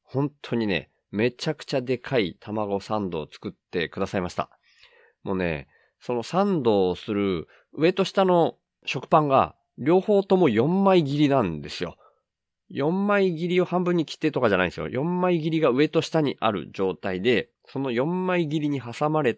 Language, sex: Japanese, male